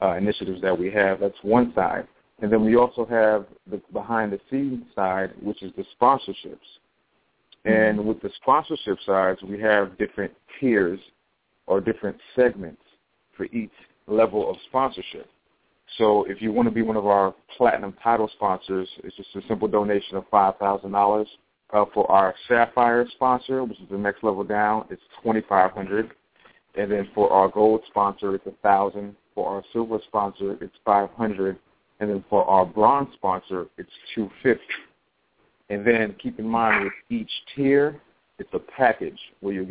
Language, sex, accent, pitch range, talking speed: English, male, American, 100-110 Hz, 155 wpm